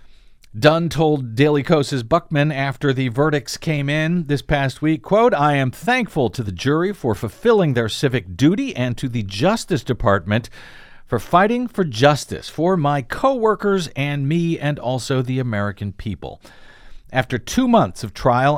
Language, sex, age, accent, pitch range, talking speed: English, male, 50-69, American, 120-175 Hz, 160 wpm